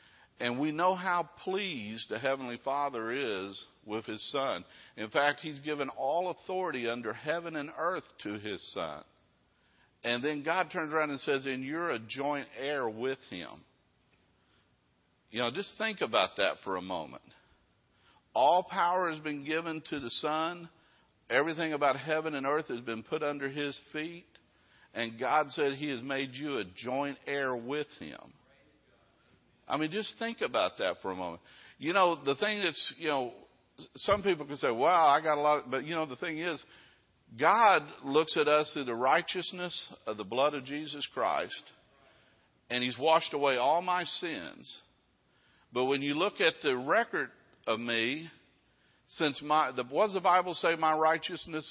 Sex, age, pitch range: male, 50-69, 135-170 Hz